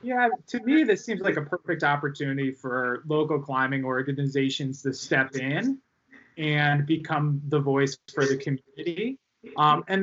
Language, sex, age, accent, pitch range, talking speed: English, male, 20-39, American, 140-180 Hz, 150 wpm